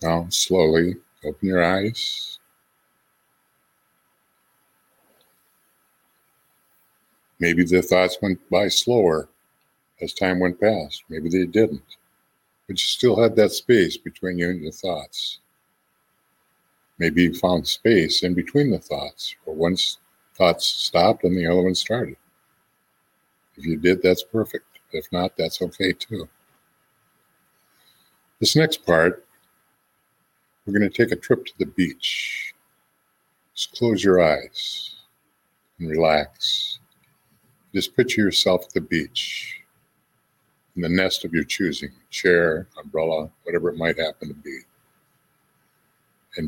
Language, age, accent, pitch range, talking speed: English, 50-69, American, 65-90 Hz, 125 wpm